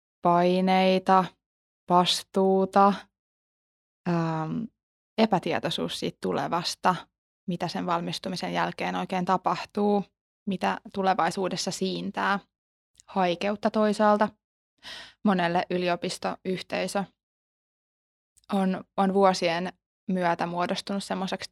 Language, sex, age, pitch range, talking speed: Finnish, female, 20-39, 175-200 Hz, 70 wpm